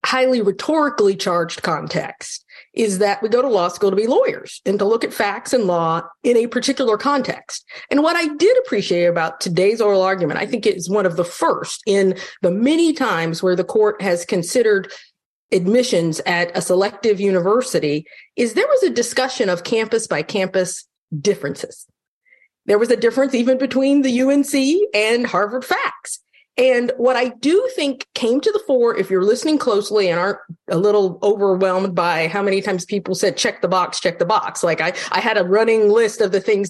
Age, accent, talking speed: 40-59, American, 190 wpm